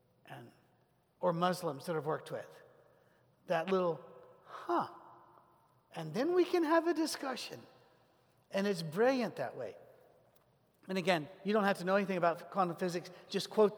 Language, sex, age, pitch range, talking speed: English, male, 50-69, 160-200 Hz, 145 wpm